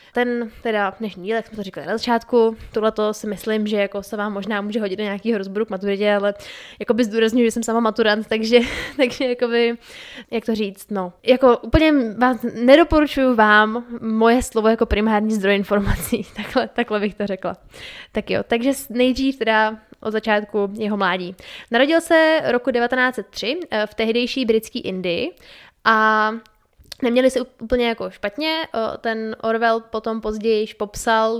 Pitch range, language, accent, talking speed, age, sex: 210-240 Hz, Czech, native, 160 wpm, 10-29, female